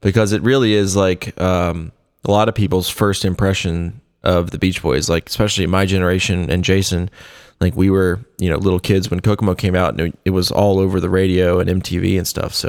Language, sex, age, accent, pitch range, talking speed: English, male, 20-39, American, 90-100 Hz, 215 wpm